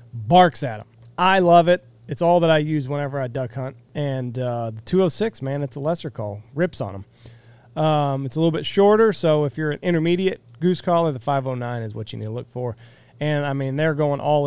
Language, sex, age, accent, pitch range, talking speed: English, male, 30-49, American, 120-165 Hz, 230 wpm